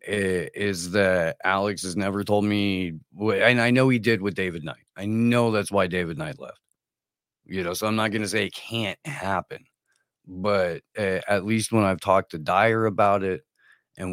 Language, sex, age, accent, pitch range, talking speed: English, male, 40-59, American, 95-115 Hz, 185 wpm